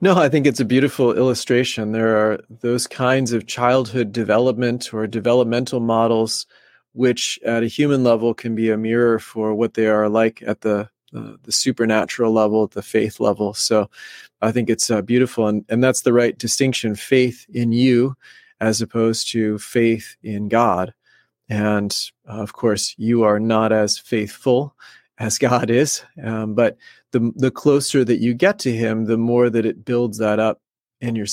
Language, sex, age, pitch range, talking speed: English, male, 30-49, 110-125 Hz, 180 wpm